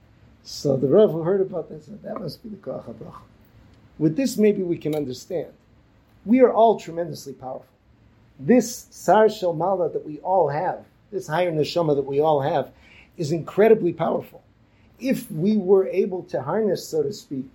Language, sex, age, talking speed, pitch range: English, male, 50-69, 170 wpm, 130-190 Hz